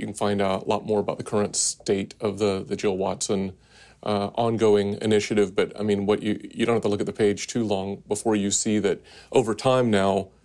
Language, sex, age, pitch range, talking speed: English, male, 40-59, 100-110 Hz, 235 wpm